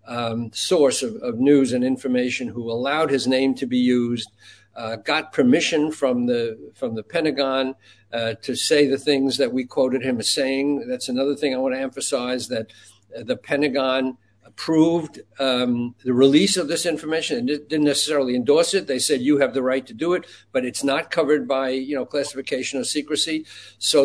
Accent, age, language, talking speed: American, 60-79, English, 185 wpm